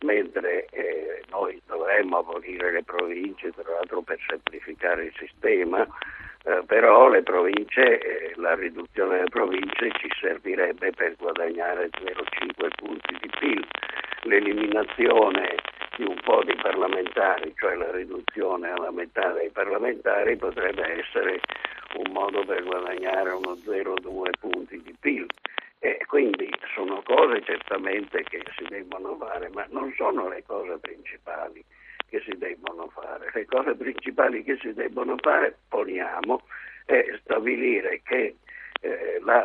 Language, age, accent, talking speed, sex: Italian, 60-79, native, 125 wpm, male